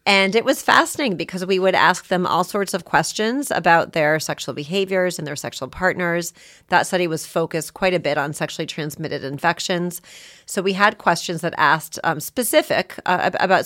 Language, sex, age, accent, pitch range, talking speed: English, female, 40-59, American, 155-200 Hz, 185 wpm